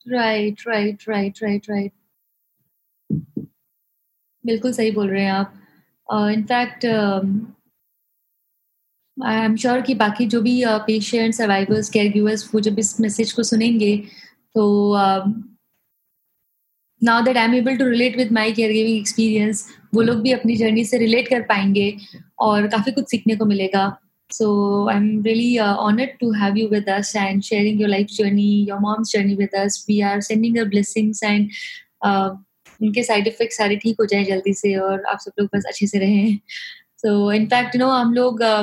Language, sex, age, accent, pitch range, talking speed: English, female, 20-39, Indian, 205-230 Hz, 135 wpm